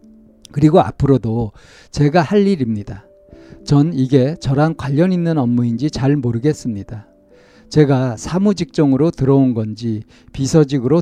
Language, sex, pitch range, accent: Korean, male, 115-155 Hz, native